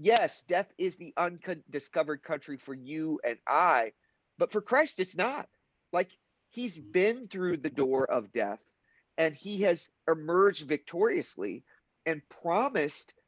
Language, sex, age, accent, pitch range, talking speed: English, male, 40-59, American, 150-205 Hz, 135 wpm